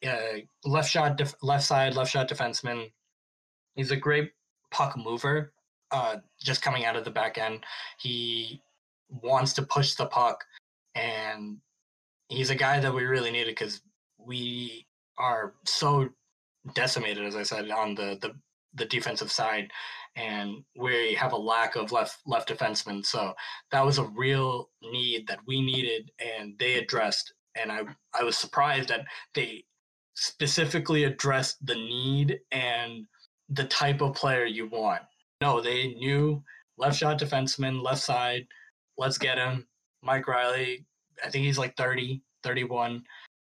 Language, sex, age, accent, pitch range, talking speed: English, male, 20-39, American, 120-140 Hz, 150 wpm